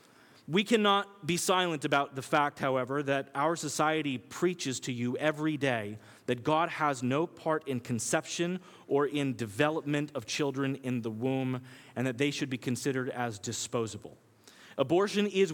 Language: English